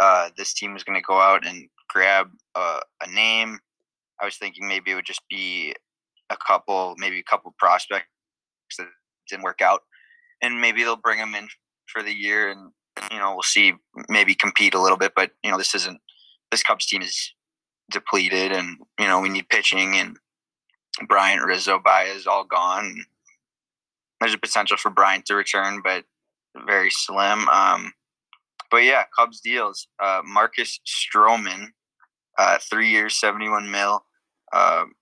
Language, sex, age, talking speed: English, male, 20-39, 165 wpm